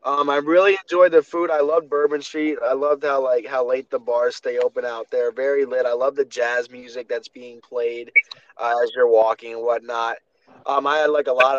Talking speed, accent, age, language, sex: 230 wpm, American, 20-39, English, male